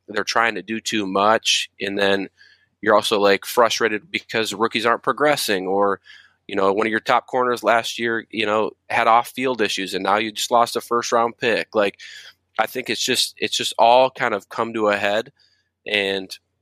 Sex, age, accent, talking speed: male, 20-39, American, 200 wpm